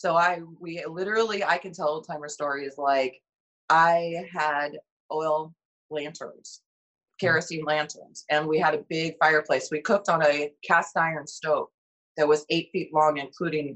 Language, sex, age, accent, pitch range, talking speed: English, female, 30-49, American, 150-190 Hz, 155 wpm